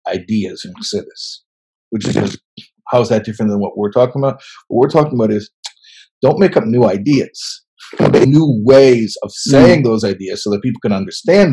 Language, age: English, 50-69